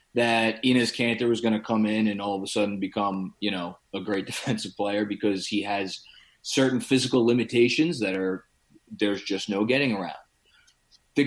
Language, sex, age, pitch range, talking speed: English, male, 30-49, 100-120 Hz, 180 wpm